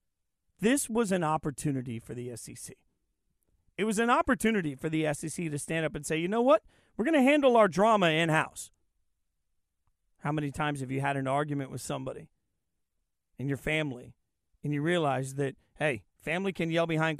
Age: 40-59